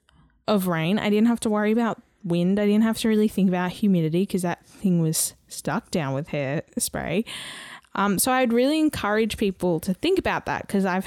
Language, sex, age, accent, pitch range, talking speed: English, female, 10-29, Australian, 170-210 Hz, 205 wpm